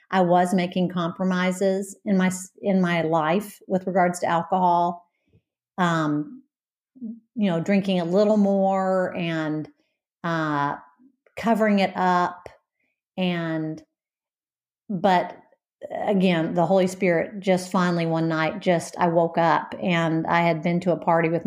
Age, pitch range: 50-69, 170-195 Hz